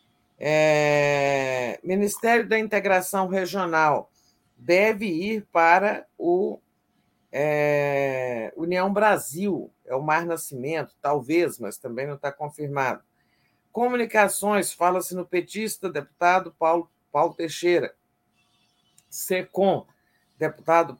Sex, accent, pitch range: male, Brazilian, 140-185 Hz